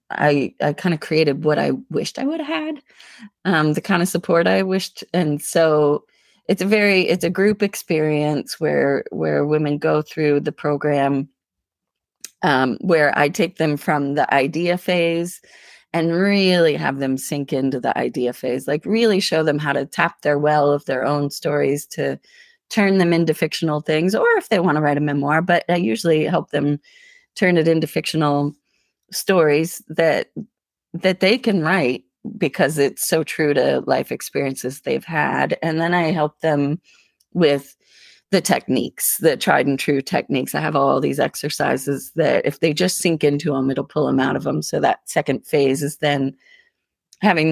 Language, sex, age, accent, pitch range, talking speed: English, female, 30-49, American, 145-175 Hz, 180 wpm